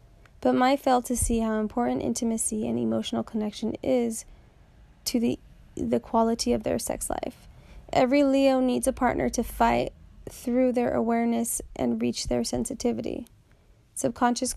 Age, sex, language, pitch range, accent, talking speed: 20-39, female, English, 225-260 Hz, American, 145 wpm